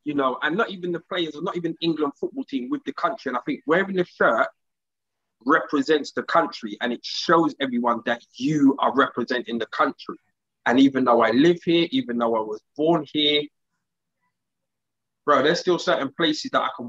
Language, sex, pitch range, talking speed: English, male, 140-185 Hz, 190 wpm